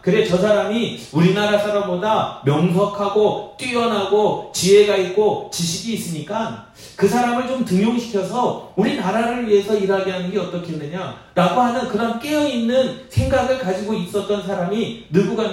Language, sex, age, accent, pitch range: Korean, male, 30-49, native, 180-225 Hz